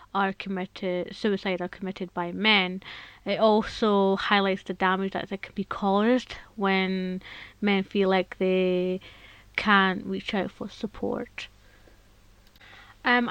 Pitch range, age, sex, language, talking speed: 190-220 Hz, 20-39, female, English, 120 wpm